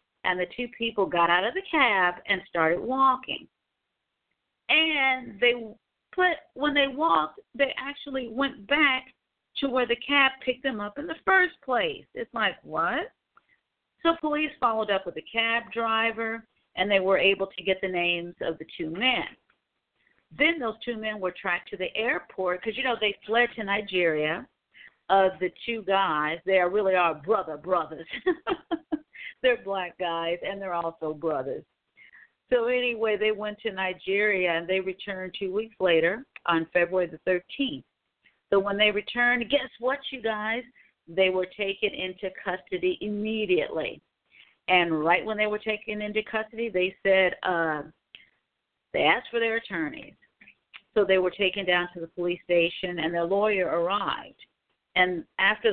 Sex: female